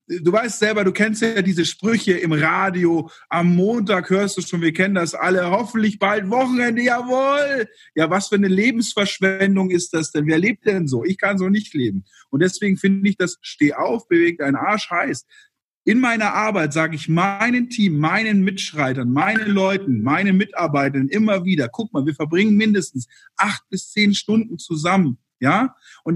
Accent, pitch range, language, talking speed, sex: German, 150-205 Hz, German, 180 wpm, male